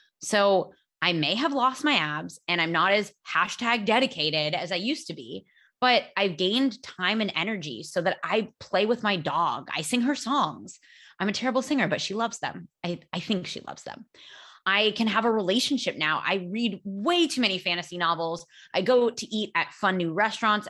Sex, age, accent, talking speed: female, 20-39, American, 205 wpm